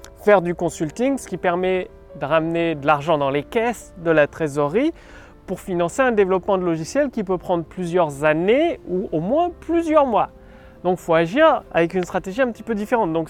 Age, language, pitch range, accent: 30-49, French, 160-220 Hz, French